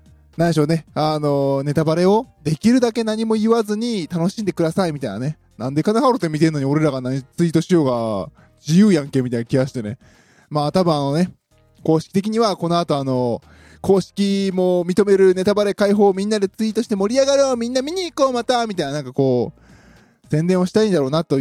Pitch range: 140-200 Hz